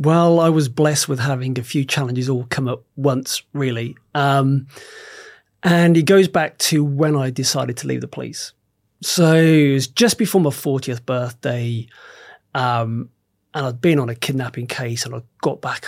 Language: English